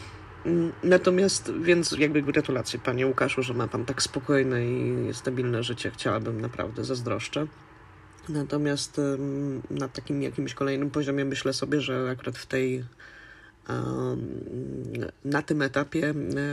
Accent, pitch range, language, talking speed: native, 125-140 Hz, Polish, 115 wpm